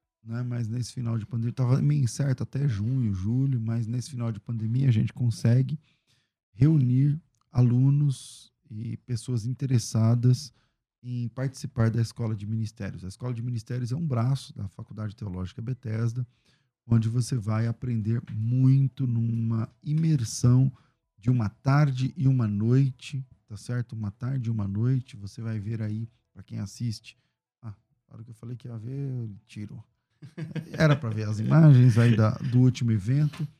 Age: 40-59